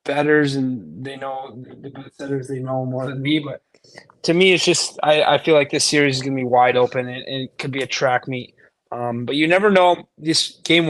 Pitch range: 125-145 Hz